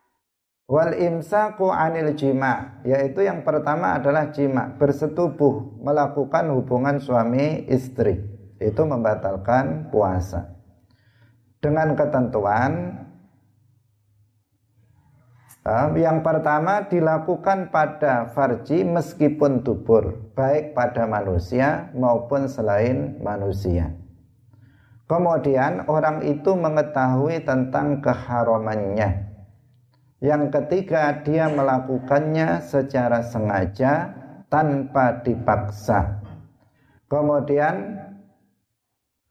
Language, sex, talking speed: Indonesian, male, 70 wpm